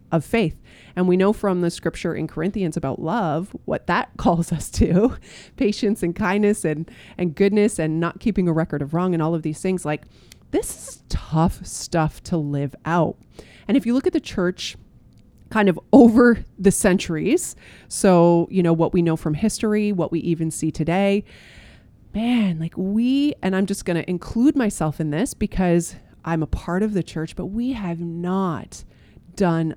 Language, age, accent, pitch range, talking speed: English, 30-49, American, 160-200 Hz, 185 wpm